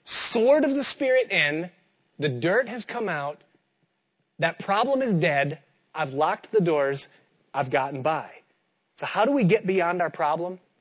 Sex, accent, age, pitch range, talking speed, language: male, American, 30-49, 140-180 Hz, 160 wpm, English